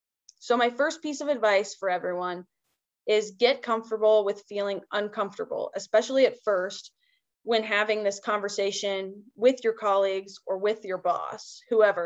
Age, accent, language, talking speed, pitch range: 20-39, American, English, 145 wpm, 200-245 Hz